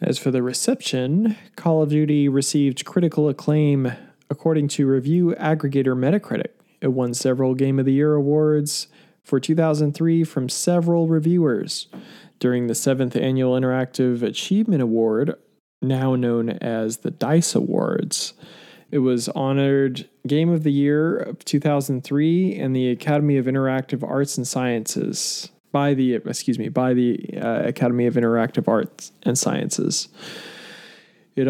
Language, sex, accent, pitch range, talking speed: English, male, American, 125-150 Hz, 135 wpm